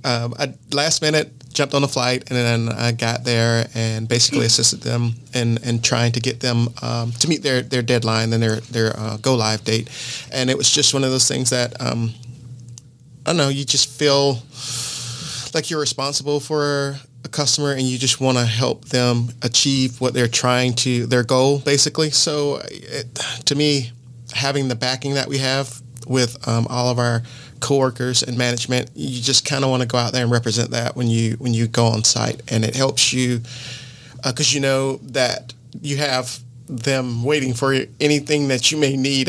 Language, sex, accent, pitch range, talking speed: English, male, American, 120-135 Hz, 195 wpm